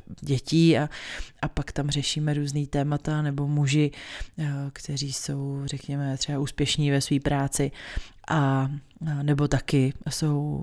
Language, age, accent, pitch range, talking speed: Czech, 30-49, native, 140-155 Hz, 125 wpm